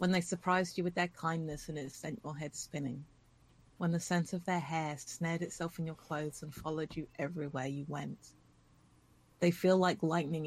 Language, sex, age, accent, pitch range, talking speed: English, female, 30-49, British, 145-175 Hz, 195 wpm